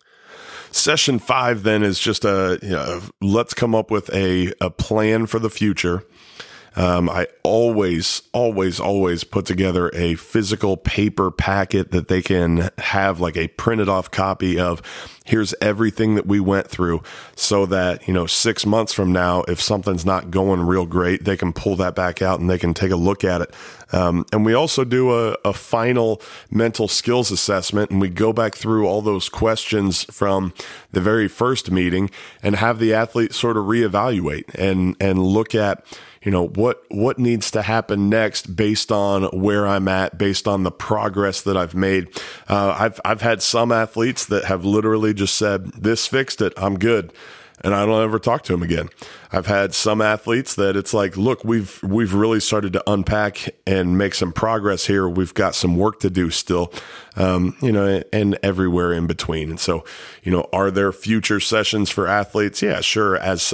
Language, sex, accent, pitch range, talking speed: English, male, American, 90-110 Hz, 185 wpm